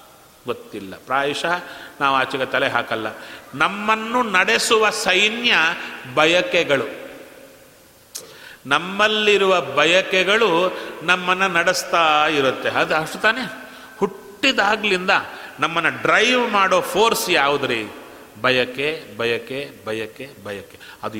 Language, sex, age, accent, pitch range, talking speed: Kannada, male, 40-59, native, 145-225 Hz, 80 wpm